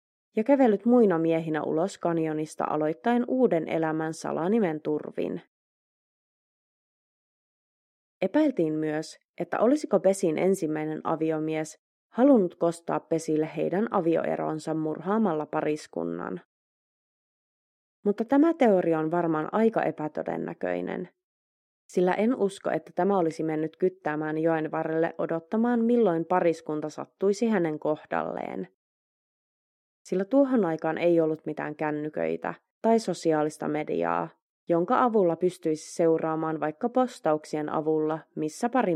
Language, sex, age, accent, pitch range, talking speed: Finnish, female, 30-49, native, 155-195 Hz, 105 wpm